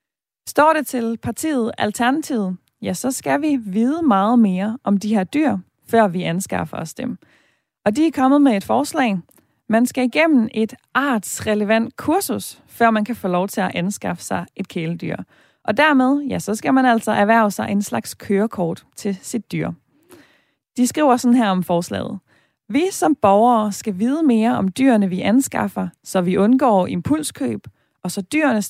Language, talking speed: Danish, 175 wpm